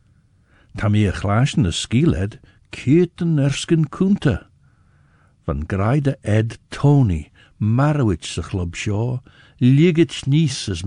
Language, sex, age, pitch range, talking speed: English, male, 60-79, 95-130 Hz, 95 wpm